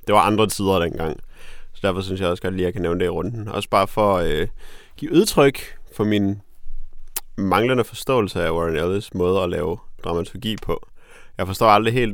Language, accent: Danish, native